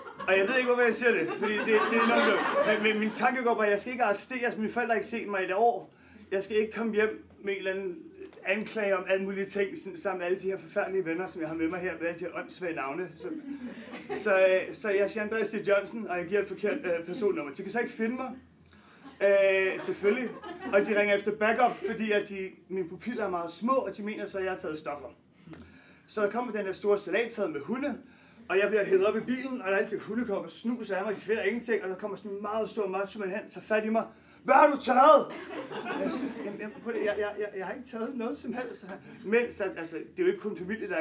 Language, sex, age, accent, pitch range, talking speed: Danish, male, 30-49, native, 190-230 Hz, 255 wpm